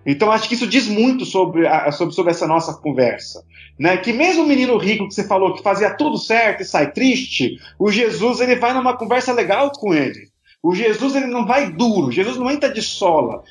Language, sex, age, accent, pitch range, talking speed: Portuguese, male, 40-59, Brazilian, 190-260 Hz, 220 wpm